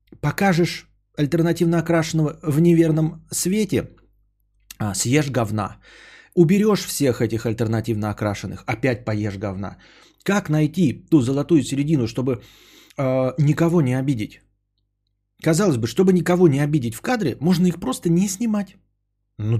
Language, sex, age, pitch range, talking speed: Bulgarian, male, 30-49, 110-165 Hz, 125 wpm